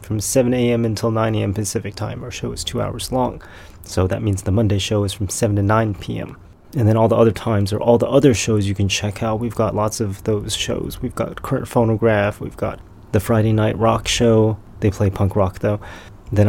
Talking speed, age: 235 wpm, 30-49